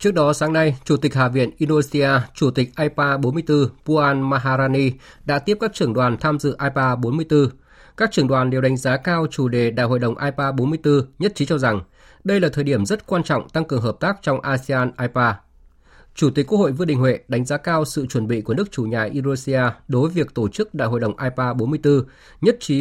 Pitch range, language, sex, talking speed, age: 120-150 Hz, Vietnamese, male, 225 wpm, 20-39